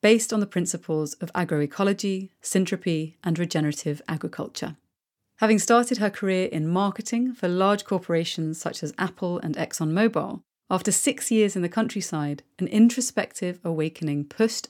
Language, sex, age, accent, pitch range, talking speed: English, female, 30-49, British, 165-210 Hz, 140 wpm